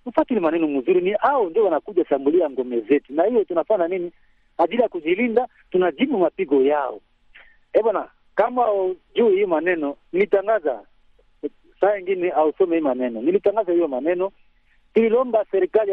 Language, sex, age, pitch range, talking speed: Swahili, male, 50-69, 180-280 Hz, 140 wpm